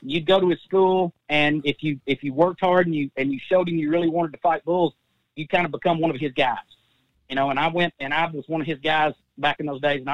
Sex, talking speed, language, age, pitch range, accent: male, 290 wpm, English, 40-59, 145-175 Hz, American